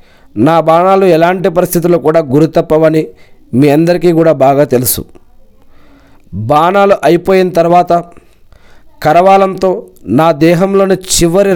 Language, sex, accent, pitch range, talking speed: Telugu, male, native, 155-180 Hz, 95 wpm